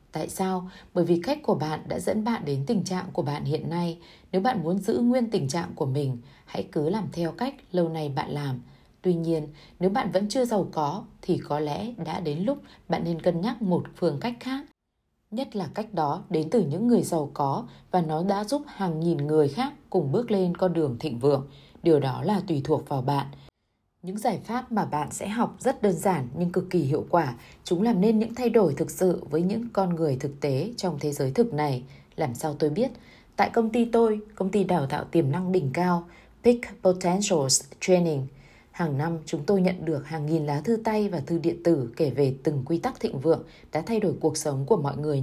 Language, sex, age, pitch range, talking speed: Vietnamese, female, 20-39, 150-200 Hz, 230 wpm